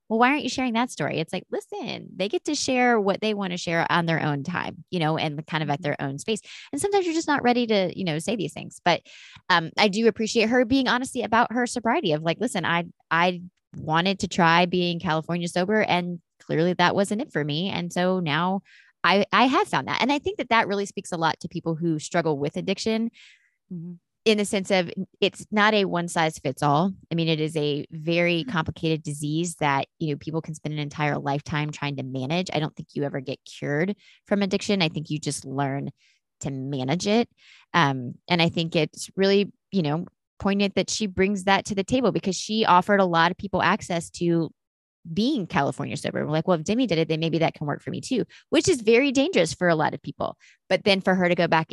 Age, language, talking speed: 20-39, English, 235 wpm